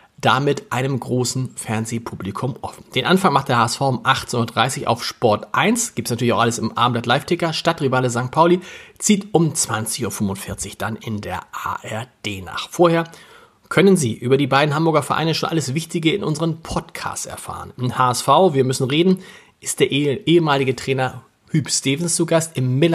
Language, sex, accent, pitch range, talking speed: German, male, German, 120-165 Hz, 165 wpm